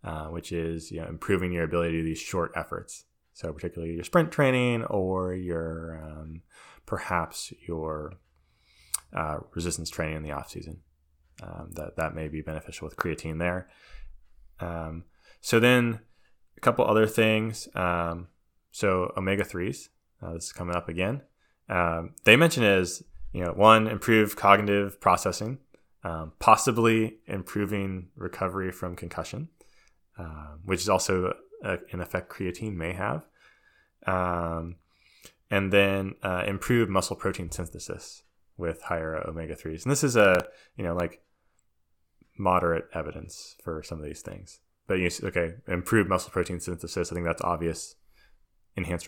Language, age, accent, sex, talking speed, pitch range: English, 20-39, American, male, 145 wpm, 80-95 Hz